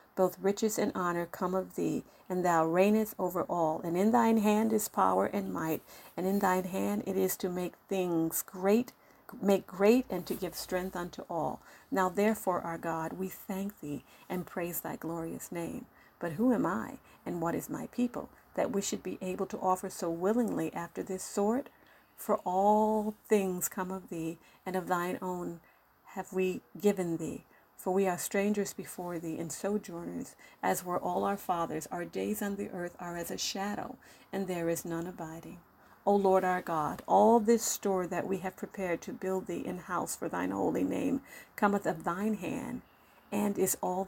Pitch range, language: 175-205 Hz, English